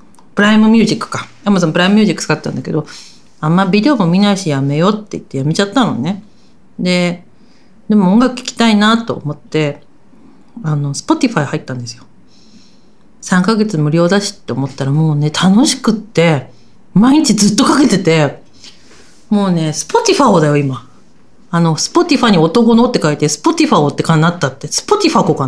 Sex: female